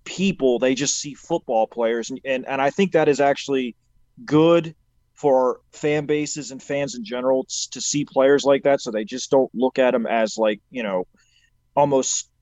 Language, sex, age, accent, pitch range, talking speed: English, male, 30-49, American, 130-155 Hz, 190 wpm